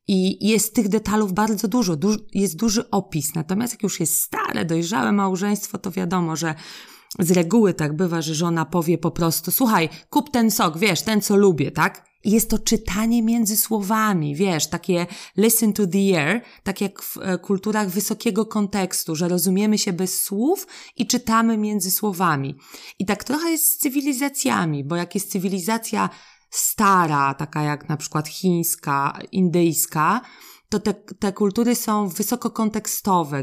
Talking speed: 155 wpm